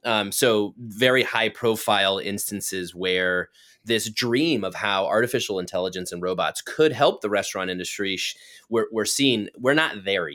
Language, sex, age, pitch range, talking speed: English, male, 20-39, 95-120 Hz, 150 wpm